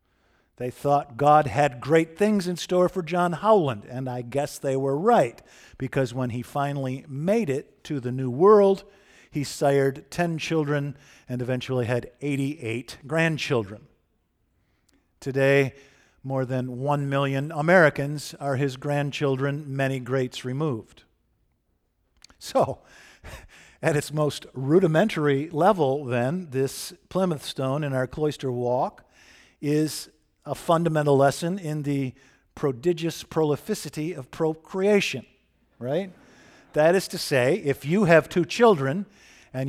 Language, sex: English, male